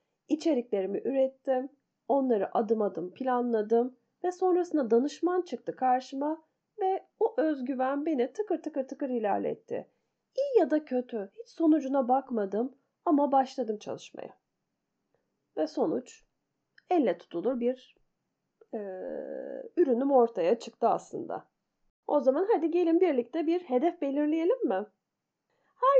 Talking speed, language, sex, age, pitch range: 110 wpm, Turkish, female, 30-49, 235-330 Hz